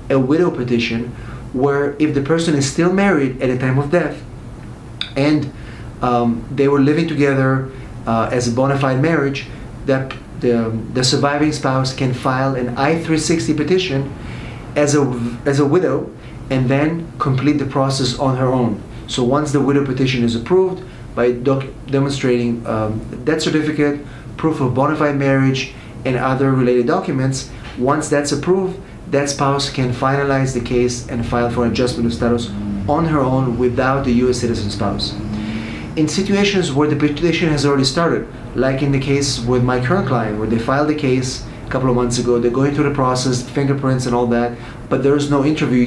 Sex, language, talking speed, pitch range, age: male, English, 175 wpm, 120-145 Hz, 30-49